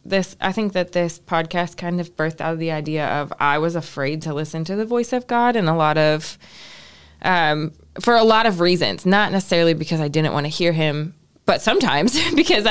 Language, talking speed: English, 215 wpm